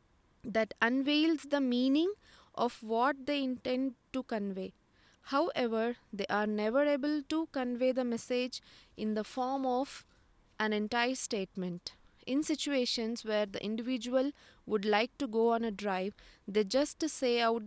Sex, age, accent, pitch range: female, 20-39, Indian, 220-270 Hz